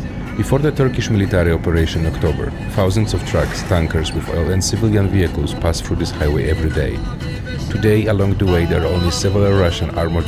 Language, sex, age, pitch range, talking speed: English, male, 40-59, 80-100 Hz, 185 wpm